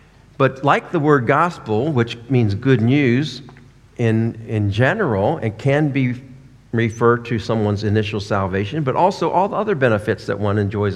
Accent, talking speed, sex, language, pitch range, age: American, 160 wpm, male, English, 105-130 Hz, 50-69